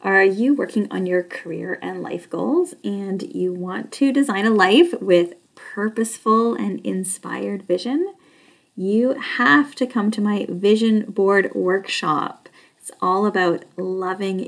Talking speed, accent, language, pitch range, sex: 140 wpm, American, English, 180-250 Hz, female